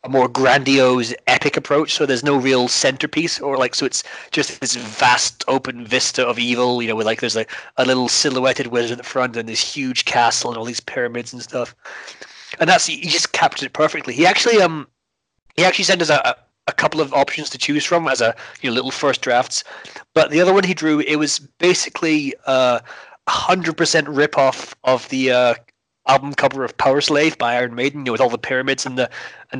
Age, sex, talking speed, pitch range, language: 30-49, male, 215 wpm, 125-150 Hz, English